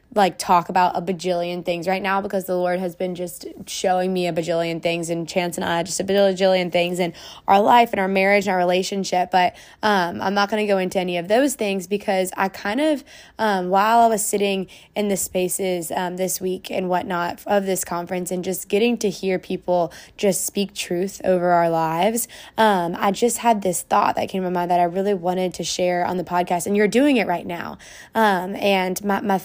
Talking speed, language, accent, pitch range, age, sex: 225 wpm, English, American, 180-200 Hz, 20-39, female